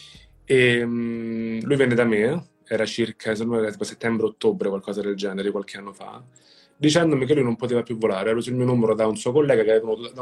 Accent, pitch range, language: native, 105-125 Hz, Italian